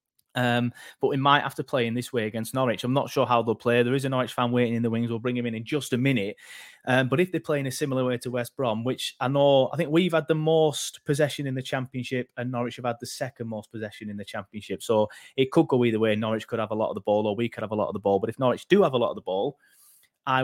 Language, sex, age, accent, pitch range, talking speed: English, male, 30-49, British, 125-155 Hz, 310 wpm